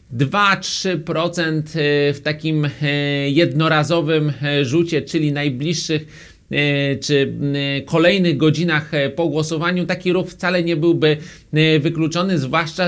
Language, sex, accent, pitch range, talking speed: Polish, male, native, 140-160 Hz, 85 wpm